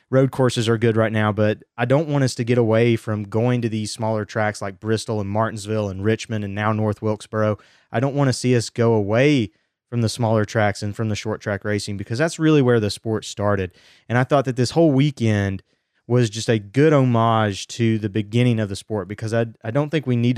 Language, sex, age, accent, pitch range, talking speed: English, male, 20-39, American, 105-125 Hz, 235 wpm